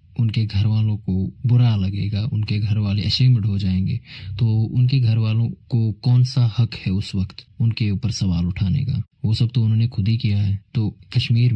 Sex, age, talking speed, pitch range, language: male, 20-39, 195 wpm, 105-125 Hz, Hindi